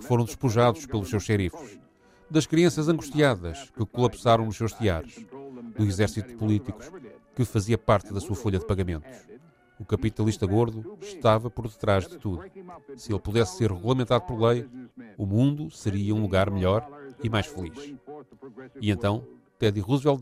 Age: 40-59